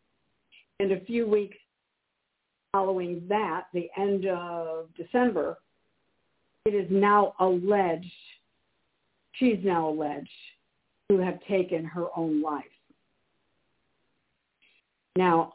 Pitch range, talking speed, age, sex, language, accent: 170-210 Hz, 95 wpm, 50-69, female, English, American